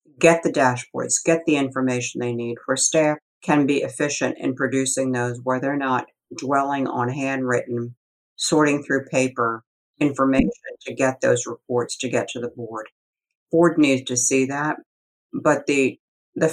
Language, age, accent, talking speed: English, 50-69, American, 155 wpm